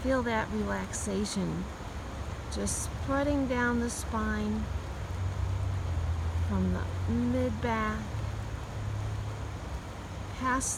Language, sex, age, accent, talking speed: English, female, 40-59, American, 65 wpm